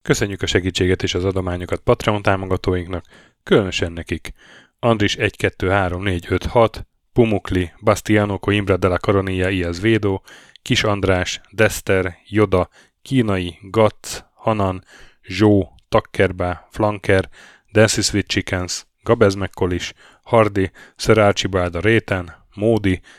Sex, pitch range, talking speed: male, 95-110 Hz, 85 wpm